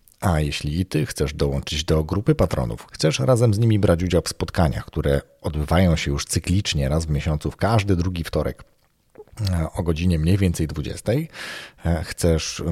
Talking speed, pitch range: 165 wpm, 75-100 Hz